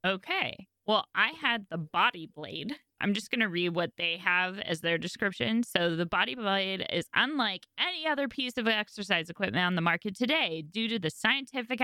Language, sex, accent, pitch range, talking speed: English, female, American, 175-255 Hz, 190 wpm